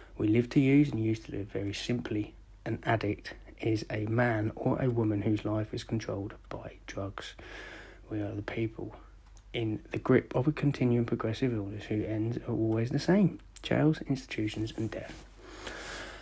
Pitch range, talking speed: 105-115 Hz, 170 wpm